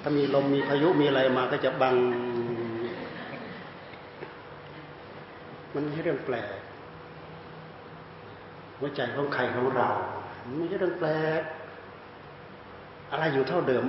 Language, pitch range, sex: Thai, 140-185 Hz, male